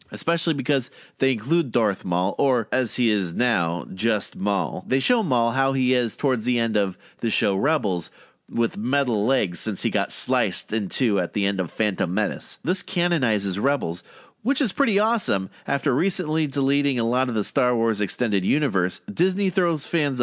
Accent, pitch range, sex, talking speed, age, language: American, 115-155 Hz, male, 185 wpm, 30-49, English